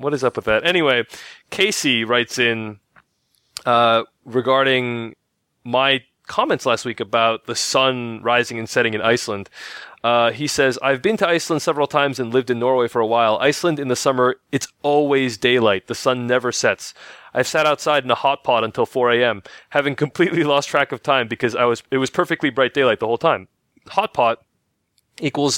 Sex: male